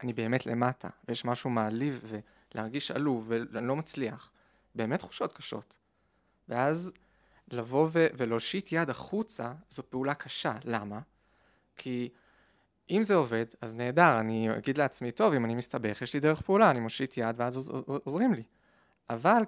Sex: male